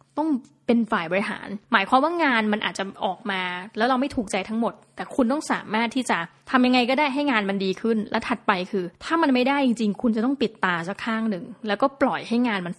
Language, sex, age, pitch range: Thai, female, 20-39, 200-245 Hz